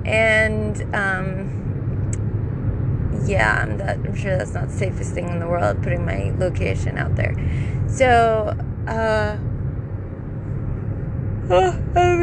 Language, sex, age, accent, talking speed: English, female, 20-39, American, 120 wpm